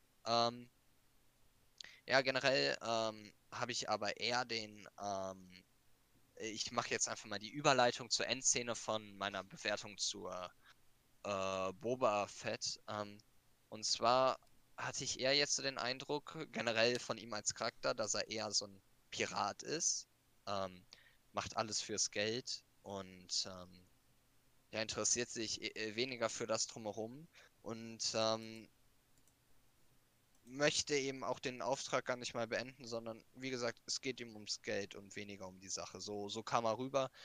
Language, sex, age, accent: German, male, 20-39, German